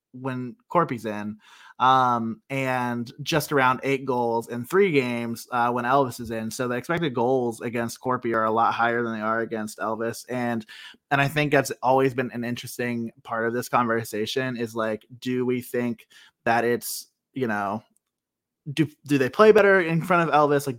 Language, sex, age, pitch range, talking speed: English, male, 20-39, 115-140 Hz, 185 wpm